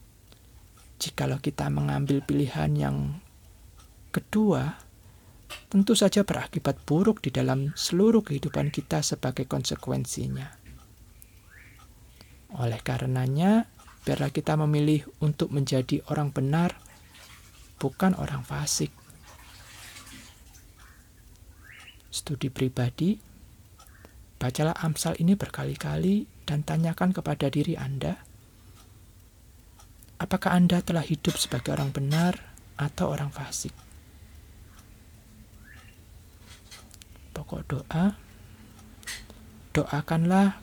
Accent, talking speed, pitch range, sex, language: native, 80 wpm, 100-155 Hz, male, Indonesian